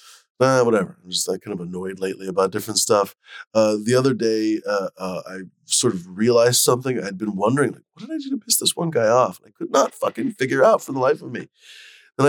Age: 20-39